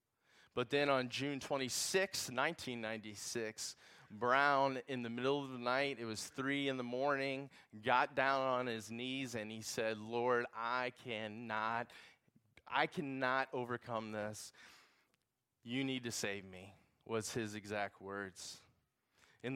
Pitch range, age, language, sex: 110-135 Hz, 20-39, English, male